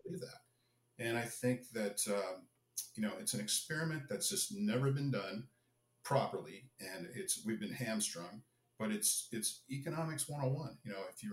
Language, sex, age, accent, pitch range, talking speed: English, male, 50-69, American, 110-155 Hz, 165 wpm